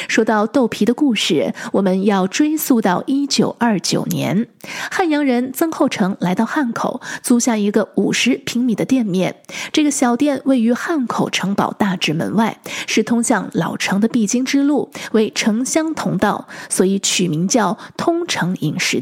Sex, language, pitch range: female, Chinese, 200-265 Hz